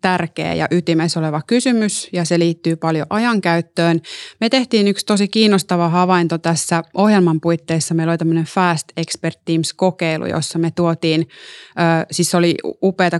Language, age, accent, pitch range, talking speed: Finnish, 30-49, native, 160-185 Hz, 145 wpm